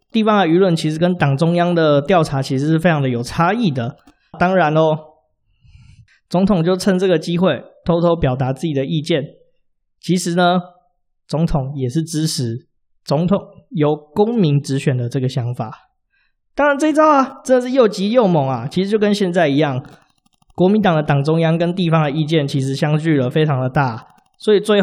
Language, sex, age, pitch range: Chinese, male, 20-39, 145-195 Hz